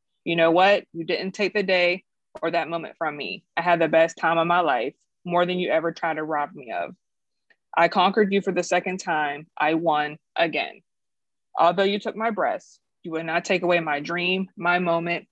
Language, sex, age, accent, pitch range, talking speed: English, female, 20-39, American, 165-195 Hz, 210 wpm